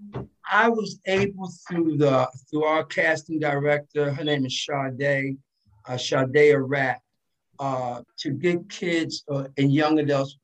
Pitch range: 135-165 Hz